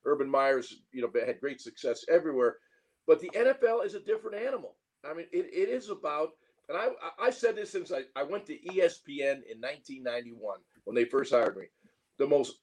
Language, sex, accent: English, male, American